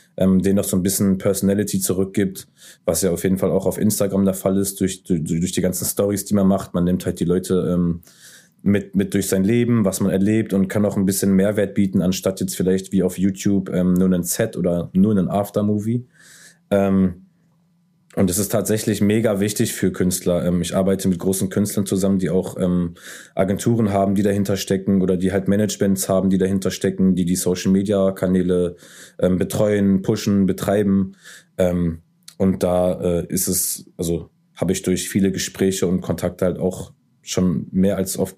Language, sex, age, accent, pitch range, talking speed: German, male, 20-39, German, 90-100 Hz, 185 wpm